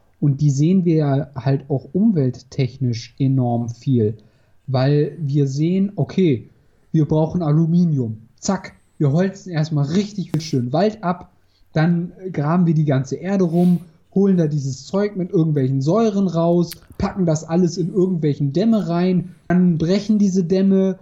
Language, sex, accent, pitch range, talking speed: German, male, German, 140-180 Hz, 145 wpm